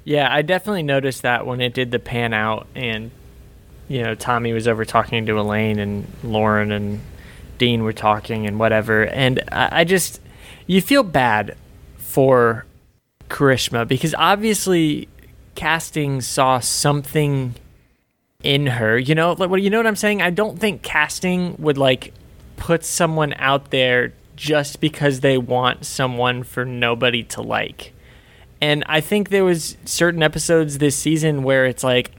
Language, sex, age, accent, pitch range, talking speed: English, male, 20-39, American, 125-155 Hz, 160 wpm